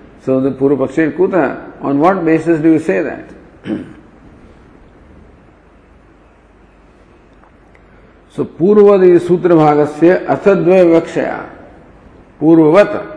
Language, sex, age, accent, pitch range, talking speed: English, male, 50-69, Indian, 115-170 Hz, 90 wpm